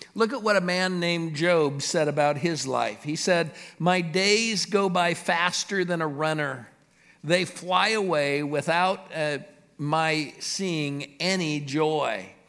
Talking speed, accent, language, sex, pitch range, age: 145 wpm, American, English, male, 165-200 Hz, 50-69